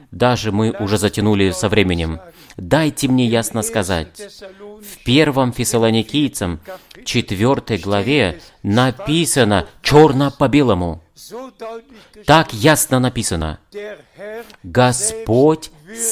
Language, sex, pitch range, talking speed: Russian, male, 110-170 Hz, 90 wpm